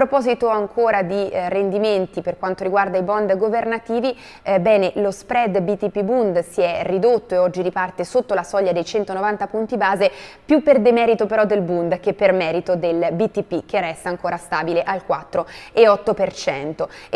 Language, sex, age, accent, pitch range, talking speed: Italian, female, 20-39, native, 180-220 Hz, 165 wpm